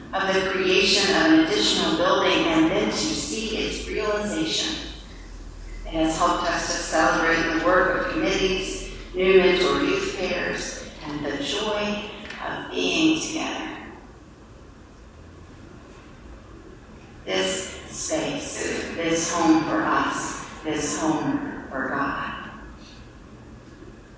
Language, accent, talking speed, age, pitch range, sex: English, American, 105 wpm, 40-59, 145-210 Hz, female